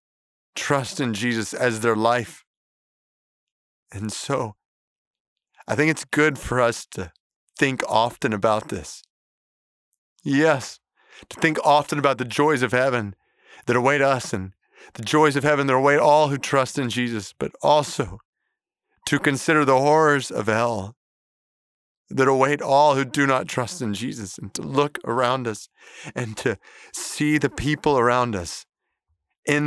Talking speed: 150 wpm